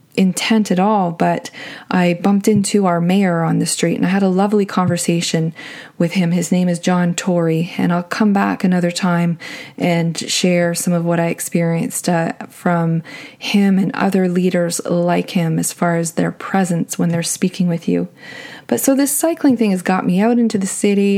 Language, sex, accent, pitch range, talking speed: English, female, American, 175-220 Hz, 195 wpm